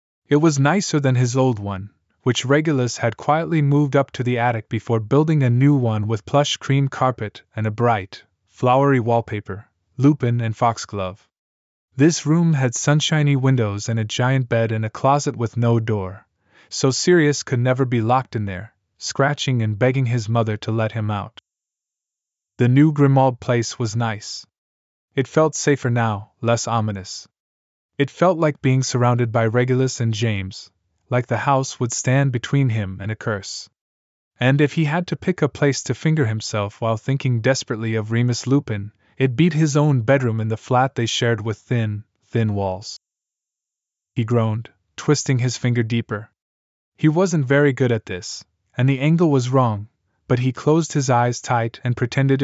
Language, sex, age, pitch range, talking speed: English, male, 20-39, 110-135 Hz, 175 wpm